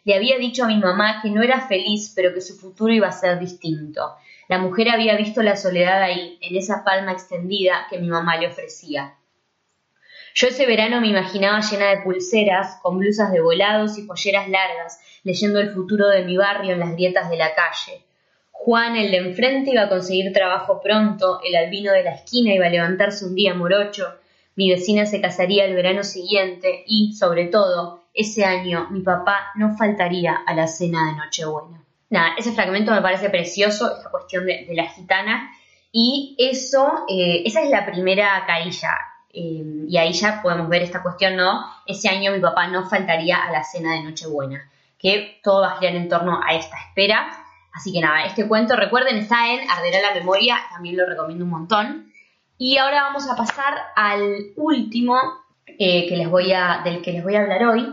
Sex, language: female, Spanish